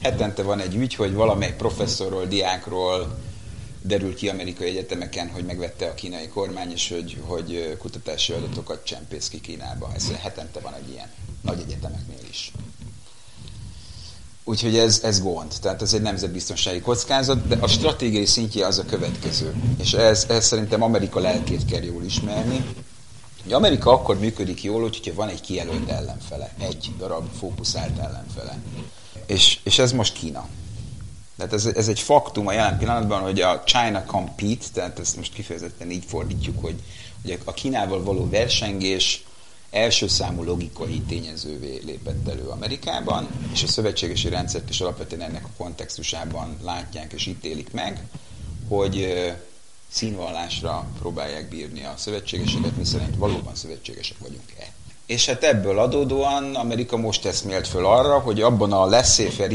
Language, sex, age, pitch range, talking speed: Hungarian, male, 30-49, 90-115 Hz, 145 wpm